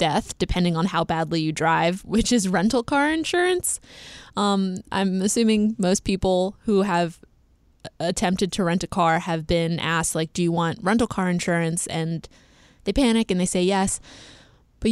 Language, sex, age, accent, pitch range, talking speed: English, female, 20-39, American, 175-225 Hz, 170 wpm